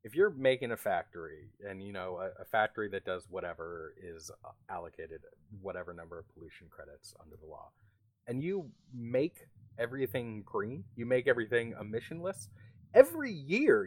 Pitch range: 100-150 Hz